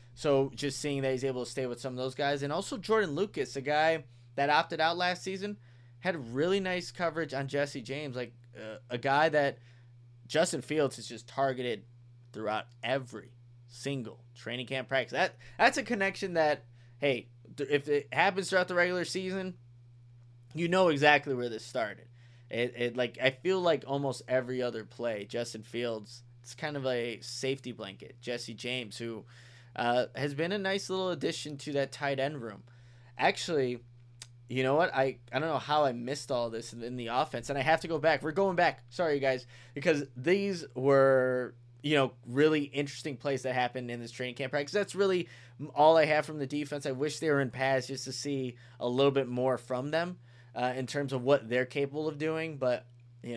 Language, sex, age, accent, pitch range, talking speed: English, male, 20-39, American, 120-150 Hz, 200 wpm